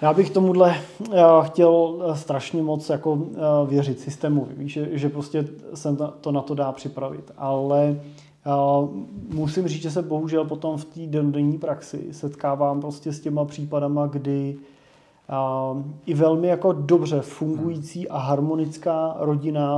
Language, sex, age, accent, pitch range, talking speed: Czech, male, 30-49, native, 135-155 Hz, 125 wpm